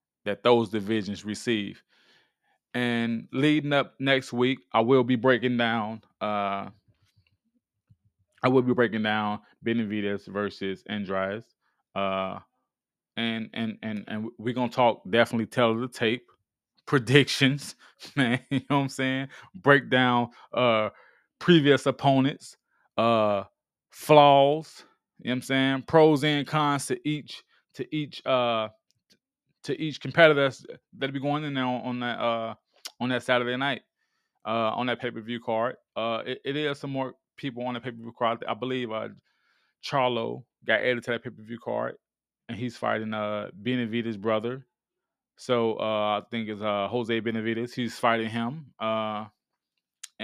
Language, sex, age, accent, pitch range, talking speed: English, male, 20-39, American, 110-135 Hz, 150 wpm